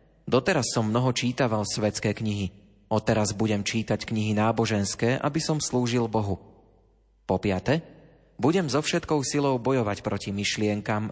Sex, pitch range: male, 105-130 Hz